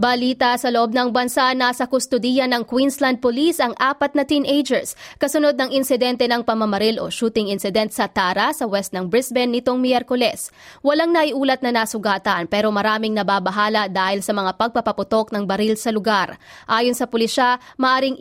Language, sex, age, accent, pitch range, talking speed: English, female, 20-39, Filipino, 215-255 Hz, 160 wpm